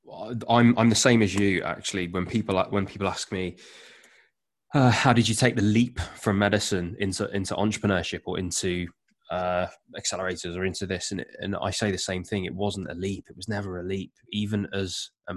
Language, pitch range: English, 90-105 Hz